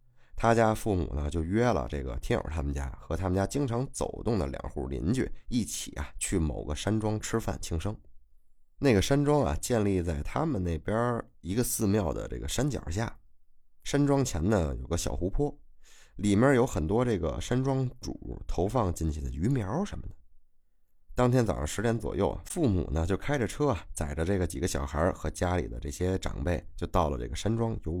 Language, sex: Chinese, male